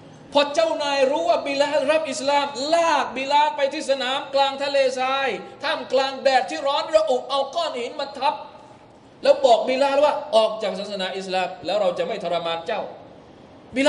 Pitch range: 180-290 Hz